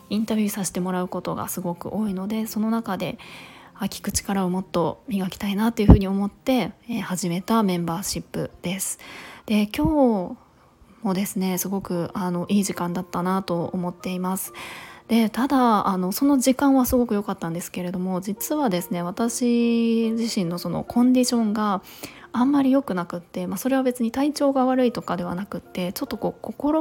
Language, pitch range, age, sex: Japanese, 180-235 Hz, 20-39, female